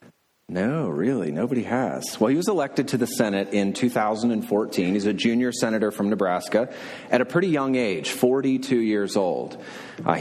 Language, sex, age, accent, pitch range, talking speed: English, male, 30-49, American, 100-130 Hz, 165 wpm